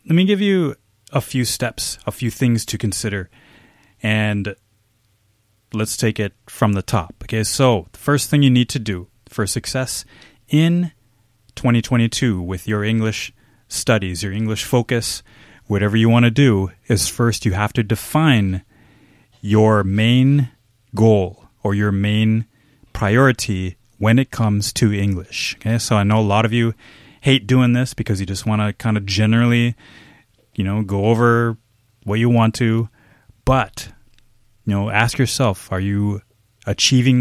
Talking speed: 155 wpm